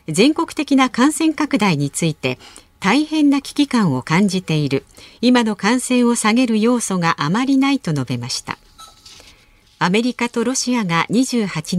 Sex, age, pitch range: female, 50-69, 160-250 Hz